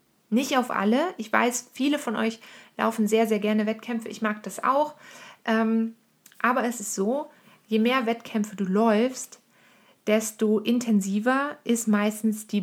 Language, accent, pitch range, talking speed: German, German, 210-255 Hz, 145 wpm